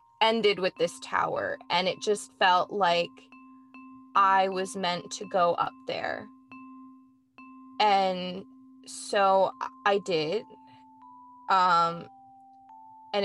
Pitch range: 180-250 Hz